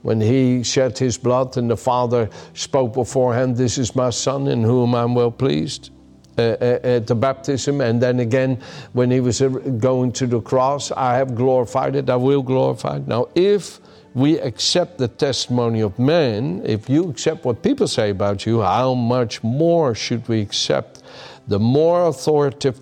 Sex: male